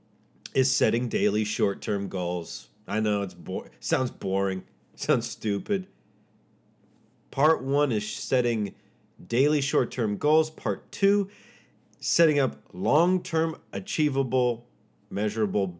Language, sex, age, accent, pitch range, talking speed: English, male, 30-49, American, 105-155 Hz, 100 wpm